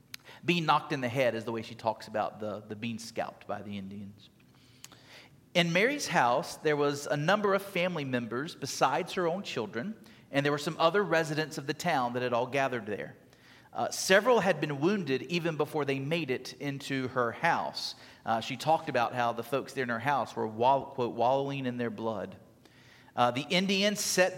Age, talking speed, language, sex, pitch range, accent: 40-59, 195 wpm, English, male, 125-170 Hz, American